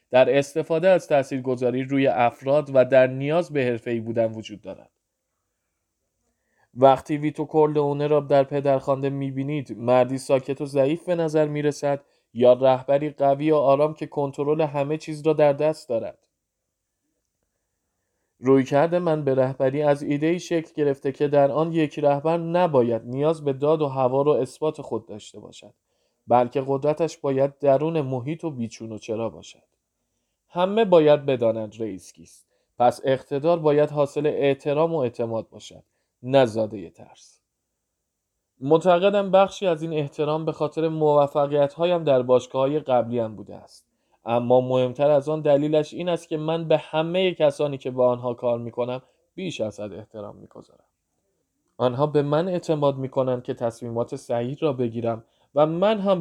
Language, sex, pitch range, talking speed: Persian, male, 120-155 Hz, 150 wpm